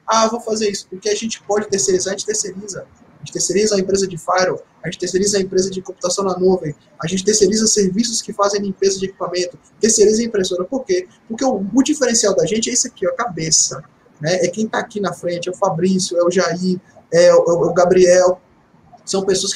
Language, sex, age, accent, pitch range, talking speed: Portuguese, male, 20-39, Brazilian, 160-210 Hz, 225 wpm